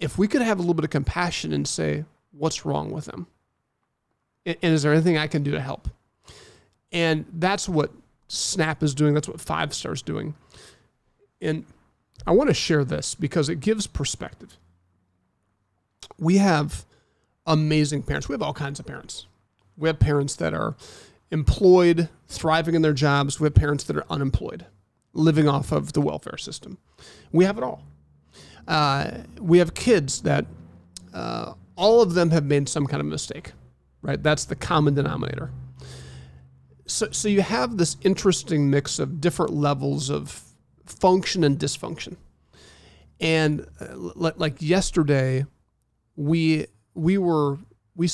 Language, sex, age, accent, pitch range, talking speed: English, male, 40-59, American, 105-160 Hz, 155 wpm